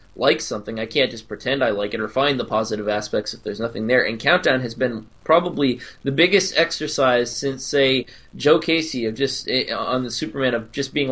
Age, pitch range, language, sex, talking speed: 20-39, 120-145 Hz, English, male, 205 wpm